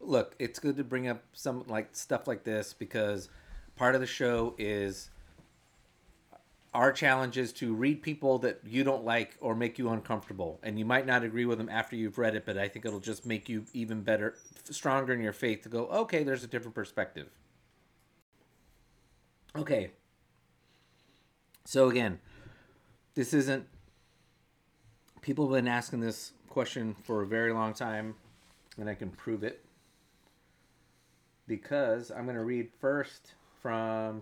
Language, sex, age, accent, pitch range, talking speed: English, male, 30-49, American, 100-125 Hz, 160 wpm